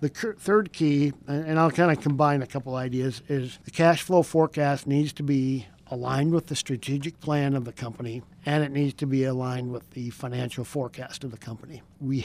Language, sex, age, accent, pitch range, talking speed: English, male, 50-69, American, 130-150 Hz, 205 wpm